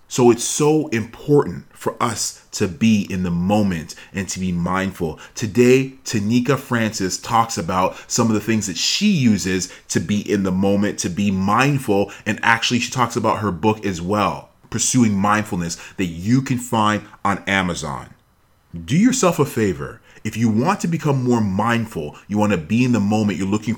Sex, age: male, 30-49